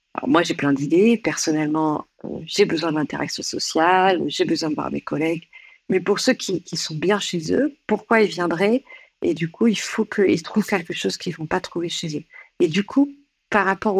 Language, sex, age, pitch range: French, female, 50-69, 160-205 Hz